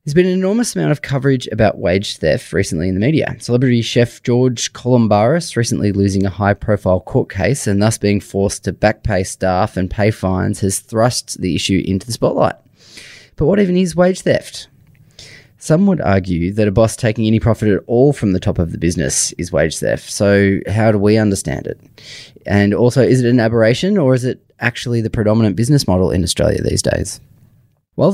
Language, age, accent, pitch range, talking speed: English, 20-39, Australian, 95-130 Hz, 195 wpm